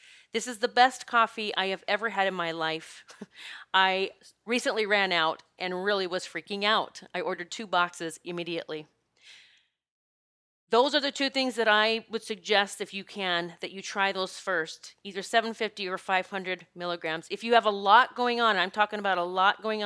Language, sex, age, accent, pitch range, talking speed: English, female, 40-59, American, 185-225 Hz, 185 wpm